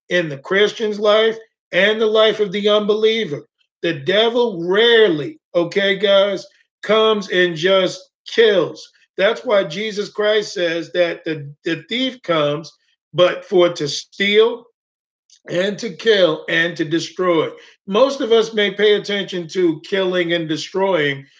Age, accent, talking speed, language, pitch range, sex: 50-69, American, 135 wpm, English, 175-225 Hz, male